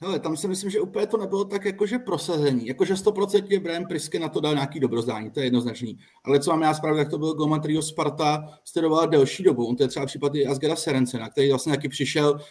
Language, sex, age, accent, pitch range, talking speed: Czech, male, 30-49, native, 140-180 Hz, 225 wpm